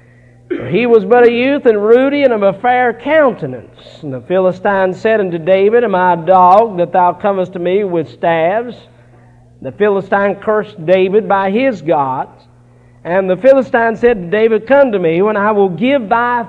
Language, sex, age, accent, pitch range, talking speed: English, male, 50-69, American, 165-230 Hz, 180 wpm